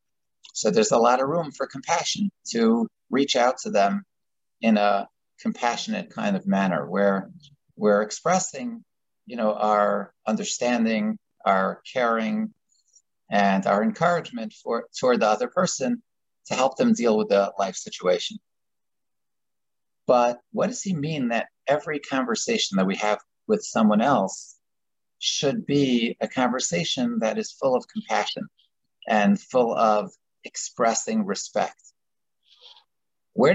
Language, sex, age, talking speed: English, male, 50-69, 130 wpm